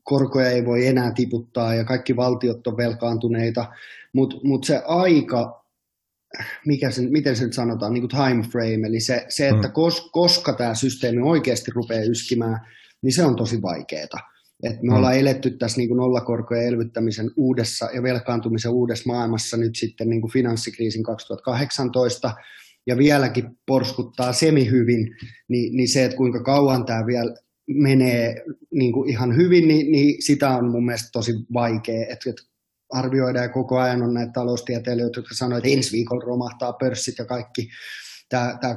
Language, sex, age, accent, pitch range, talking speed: Finnish, male, 20-39, native, 115-130 Hz, 155 wpm